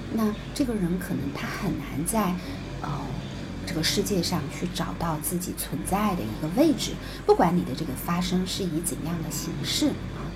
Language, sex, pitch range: Chinese, female, 180-290 Hz